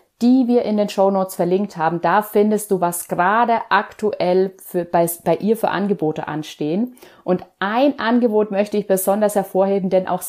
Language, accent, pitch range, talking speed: German, German, 175-225 Hz, 175 wpm